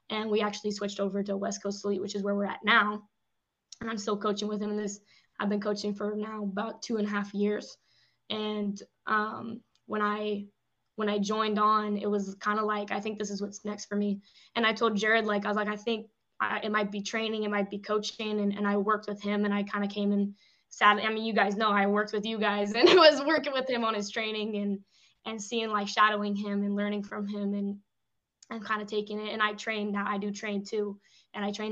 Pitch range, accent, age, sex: 205-215 Hz, American, 10-29, female